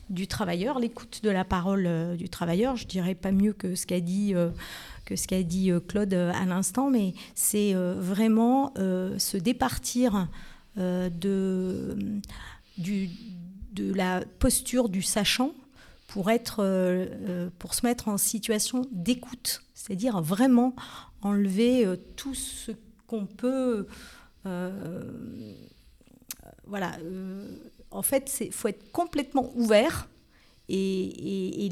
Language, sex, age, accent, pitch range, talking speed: French, female, 40-59, French, 185-240 Hz, 140 wpm